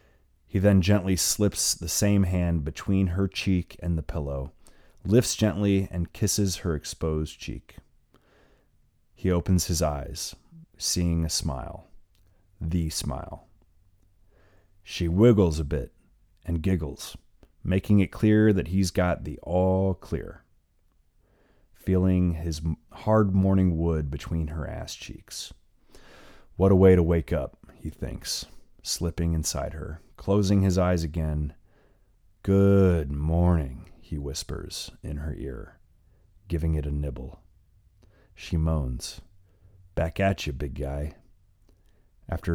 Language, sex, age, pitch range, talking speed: English, male, 30-49, 75-95 Hz, 125 wpm